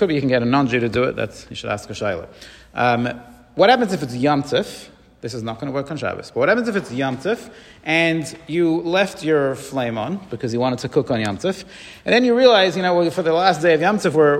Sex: male